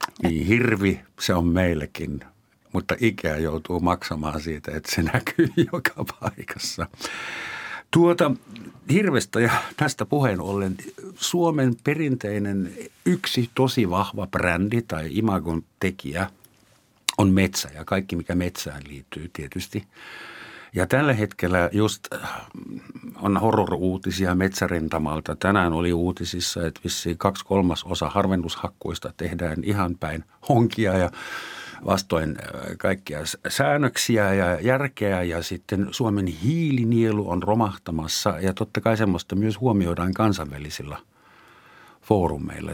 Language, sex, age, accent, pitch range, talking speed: Finnish, male, 60-79, native, 85-110 Hz, 110 wpm